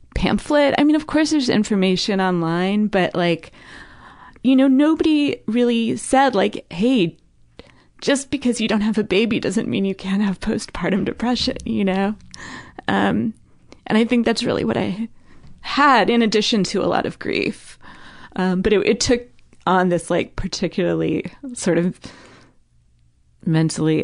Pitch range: 155-205 Hz